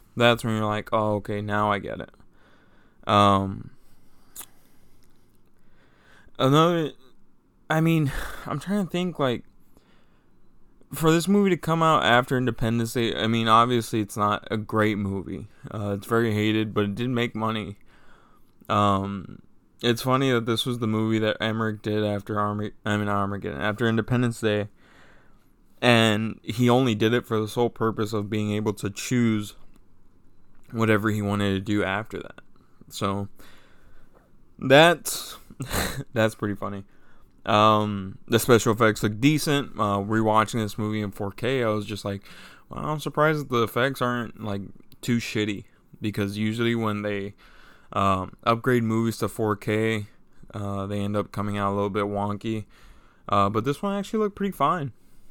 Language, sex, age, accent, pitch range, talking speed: English, male, 20-39, American, 105-120 Hz, 155 wpm